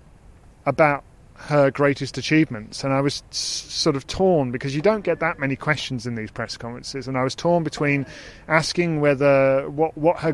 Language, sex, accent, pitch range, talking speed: English, male, British, 120-145 Hz, 180 wpm